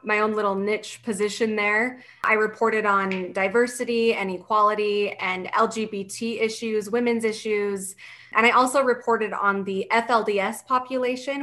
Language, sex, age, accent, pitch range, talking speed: English, female, 20-39, American, 195-225 Hz, 130 wpm